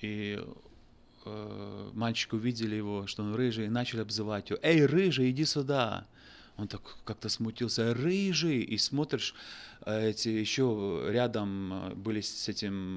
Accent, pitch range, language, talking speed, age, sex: native, 105-130 Hz, Russian, 140 wpm, 30-49, male